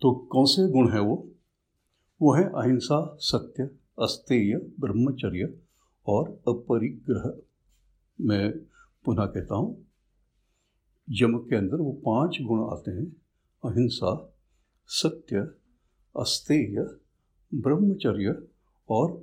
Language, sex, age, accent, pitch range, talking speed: Hindi, male, 60-79, native, 100-135 Hz, 95 wpm